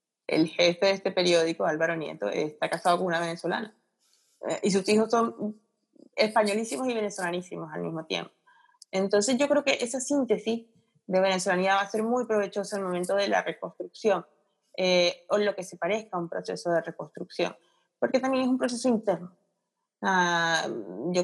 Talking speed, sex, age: 170 wpm, female, 20-39